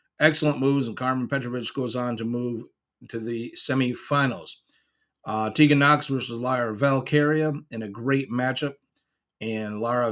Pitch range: 110-135 Hz